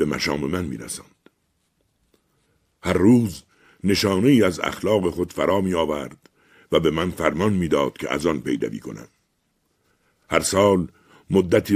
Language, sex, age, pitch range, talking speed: Persian, male, 60-79, 80-100 Hz, 150 wpm